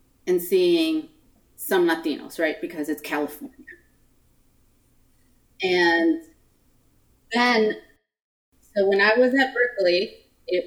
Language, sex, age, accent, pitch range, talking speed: English, female, 30-49, American, 170-245 Hz, 95 wpm